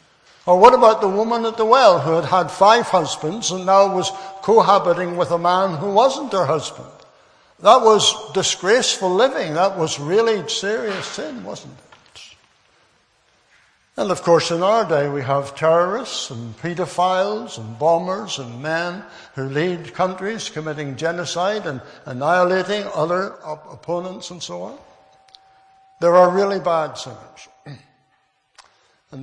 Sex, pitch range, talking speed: male, 165-210 Hz, 140 wpm